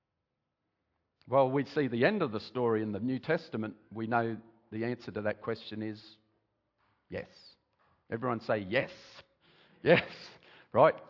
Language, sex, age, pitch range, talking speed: English, male, 50-69, 125-190 Hz, 140 wpm